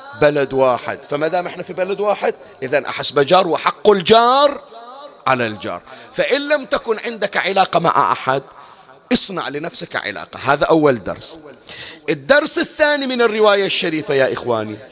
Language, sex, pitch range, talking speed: Arabic, male, 130-190 Hz, 140 wpm